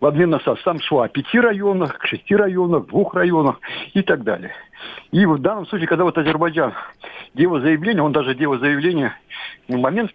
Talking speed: 190 wpm